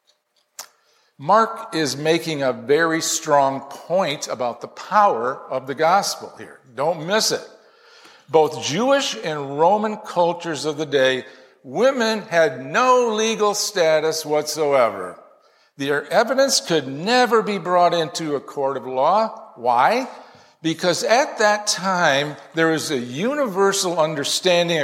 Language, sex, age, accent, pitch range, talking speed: English, male, 50-69, American, 150-220 Hz, 125 wpm